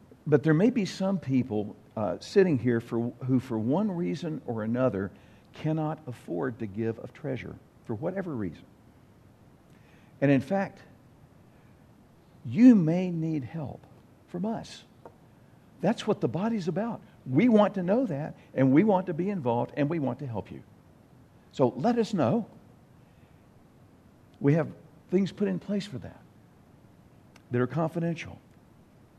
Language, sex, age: English, male, 60-79